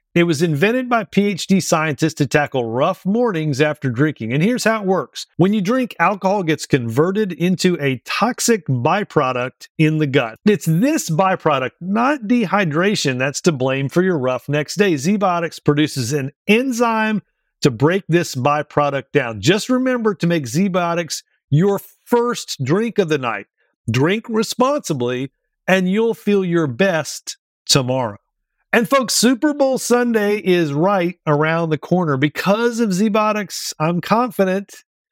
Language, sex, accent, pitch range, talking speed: English, male, American, 150-210 Hz, 145 wpm